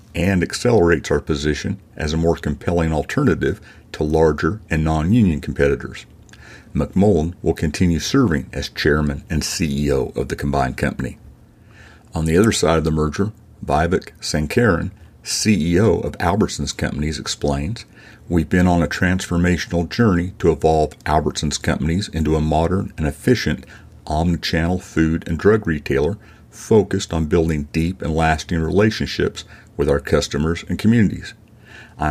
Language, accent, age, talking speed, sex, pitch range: English, American, 50-69, 140 wpm, male, 80-95 Hz